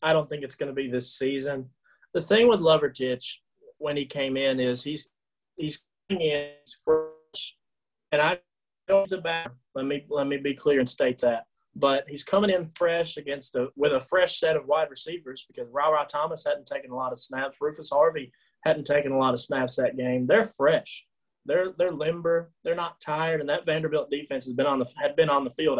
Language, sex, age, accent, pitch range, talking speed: English, male, 30-49, American, 135-175 Hz, 215 wpm